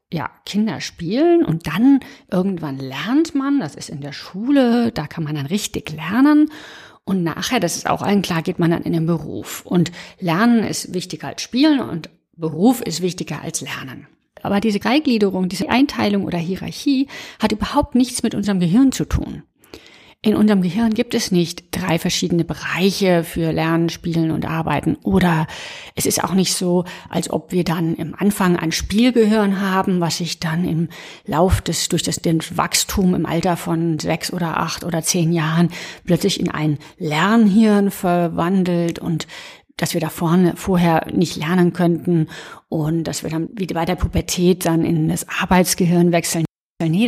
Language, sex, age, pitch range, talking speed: German, female, 50-69, 165-205 Hz, 170 wpm